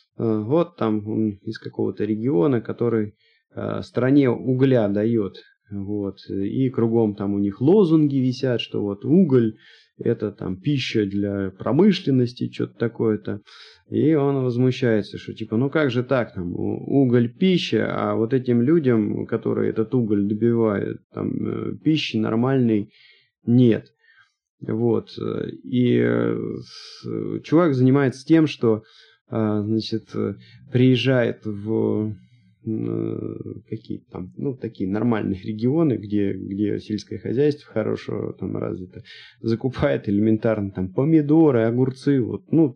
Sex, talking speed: male, 115 wpm